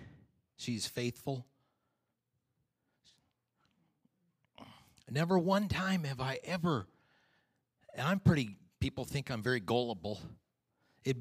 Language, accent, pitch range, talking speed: English, American, 100-130 Hz, 90 wpm